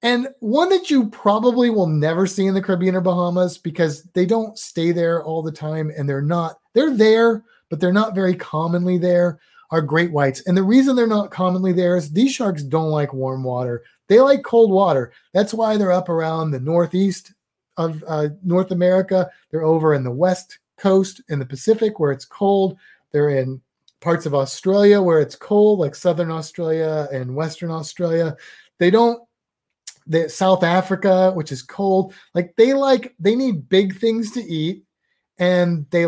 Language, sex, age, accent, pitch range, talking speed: English, male, 30-49, American, 150-200 Hz, 180 wpm